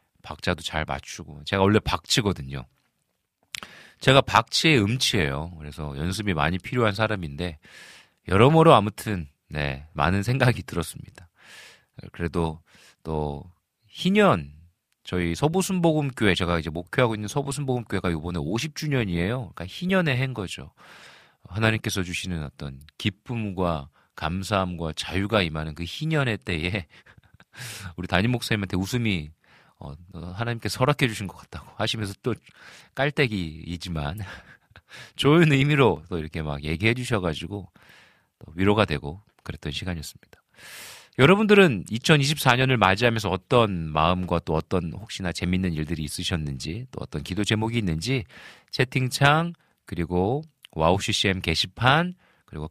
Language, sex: Korean, male